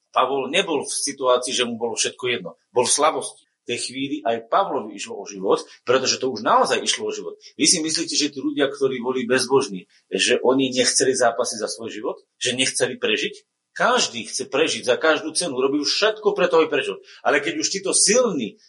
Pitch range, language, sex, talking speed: 140-230 Hz, Slovak, male, 200 wpm